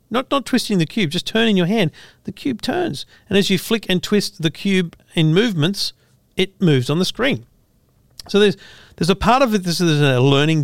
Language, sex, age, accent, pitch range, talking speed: English, male, 40-59, Australian, 135-185 Hz, 215 wpm